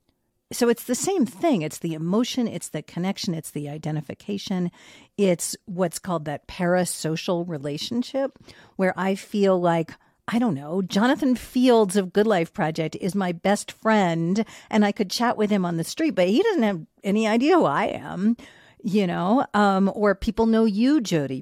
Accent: American